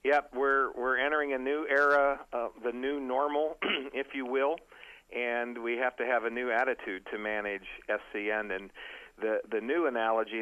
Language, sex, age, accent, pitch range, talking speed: English, male, 50-69, American, 110-130 Hz, 175 wpm